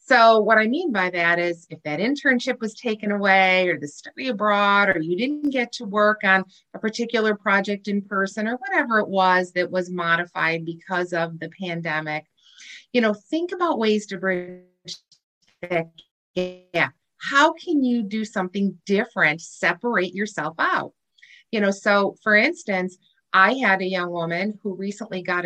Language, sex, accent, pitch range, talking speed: English, female, American, 180-245 Hz, 165 wpm